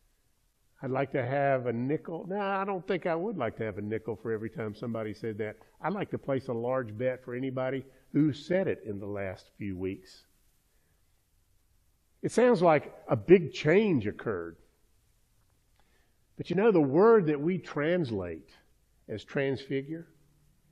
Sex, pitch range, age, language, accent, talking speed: male, 115-165 Hz, 50-69, English, American, 165 wpm